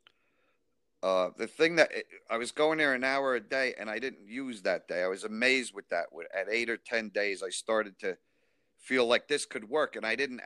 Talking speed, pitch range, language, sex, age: 225 wpm, 110-135 Hz, English, male, 50-69